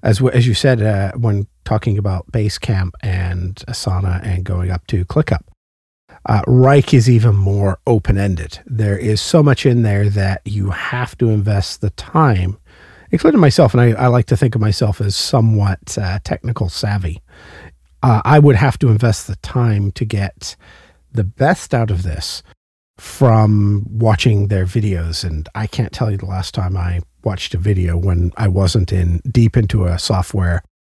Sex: male